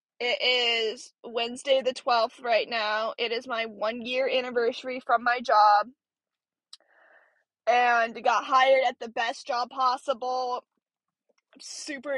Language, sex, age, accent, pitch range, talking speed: English, female, 10-29, American, 235-270 Hz, 120 wpm